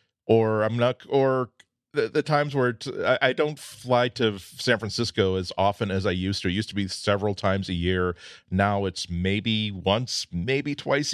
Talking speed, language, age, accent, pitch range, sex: 195 wpm, English, 40-59, American, 95-120 Hz, male